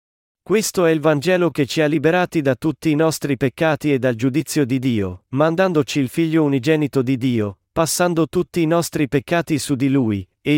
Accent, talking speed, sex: native, 185 wpm, male